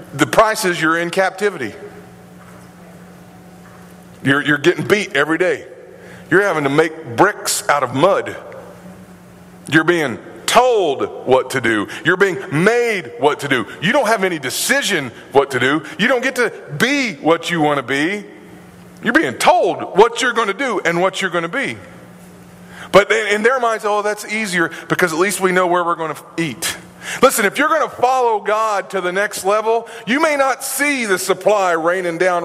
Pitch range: 175-240 Hz